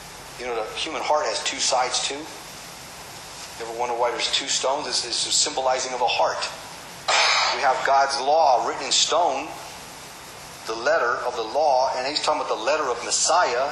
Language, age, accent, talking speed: English, 40-59, American, 190 wpm